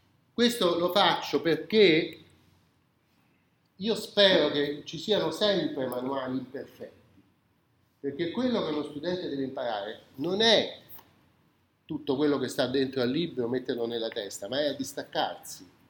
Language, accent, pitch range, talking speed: Italian, native, 125-175 Hz, 130 wpm